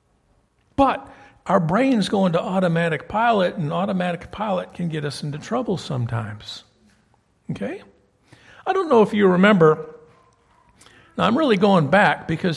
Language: English